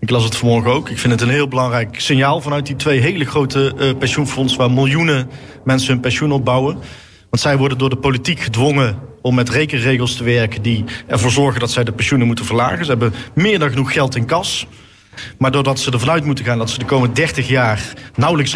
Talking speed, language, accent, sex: 220 wpm, Dutch, Dutch, male